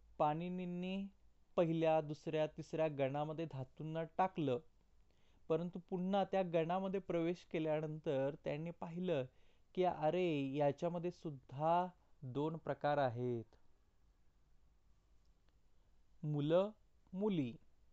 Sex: male